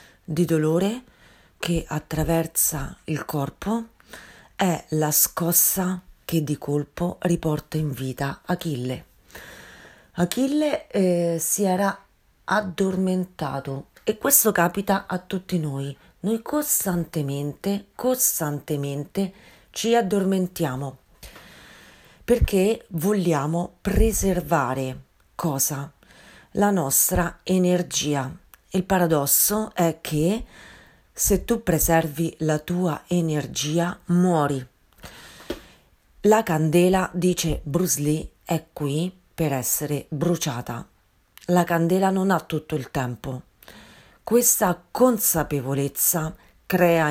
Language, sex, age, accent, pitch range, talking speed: Italian, female, 40-59, native, 150-195 Hz, 90 wpm